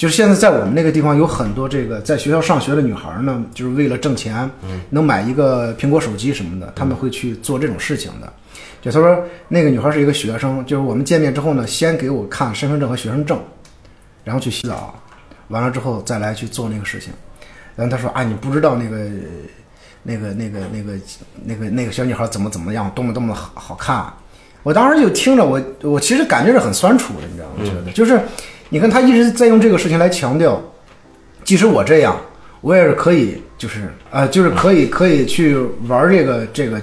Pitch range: 115-165 Hz